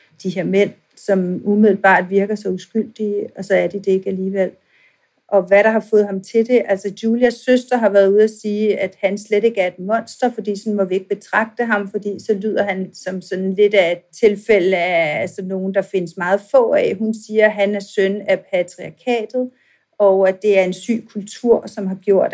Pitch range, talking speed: 190-220 Hz, 220 wpm